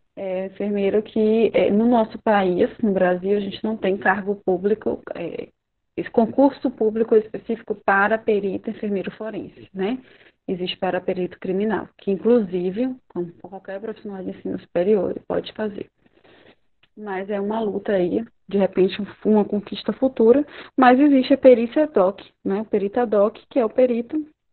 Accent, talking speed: Brazilian, 155 wpm